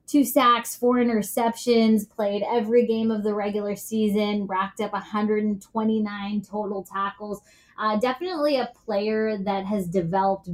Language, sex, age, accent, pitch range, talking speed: English, female, 20-39, American, 195-220 Hz, 130 wpm